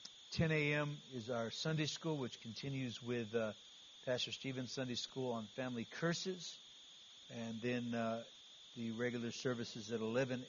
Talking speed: 145 wpm